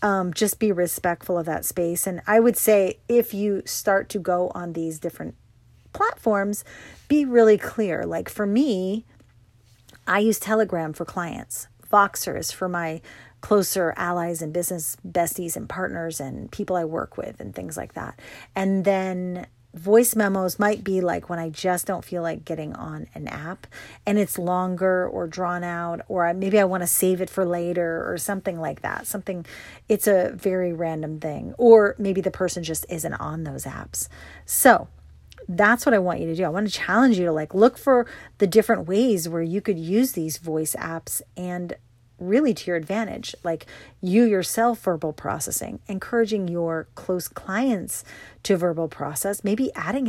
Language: English